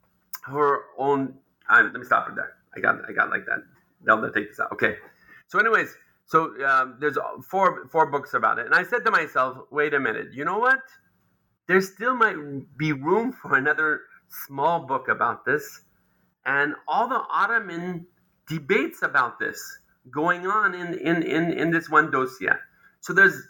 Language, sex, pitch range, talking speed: English, male, 135-195 Hz, 175 wpm